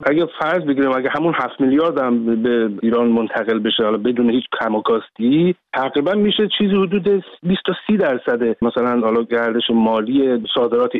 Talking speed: 145 wpm